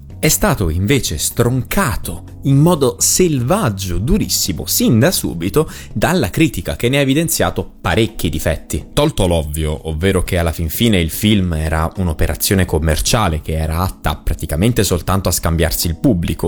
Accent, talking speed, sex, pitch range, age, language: native, 145 wpm, male, 80-100 Hz, 20-39, Italian